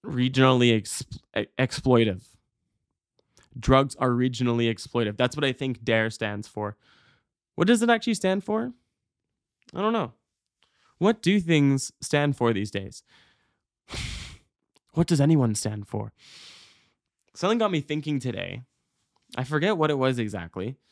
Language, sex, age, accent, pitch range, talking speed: English, male, 20-39, American, 115-145 Hz, 130 wpm